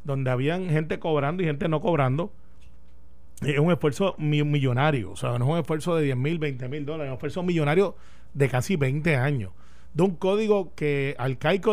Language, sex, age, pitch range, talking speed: Spanish, male, 30-49, 135-180 Hz, 190 wpm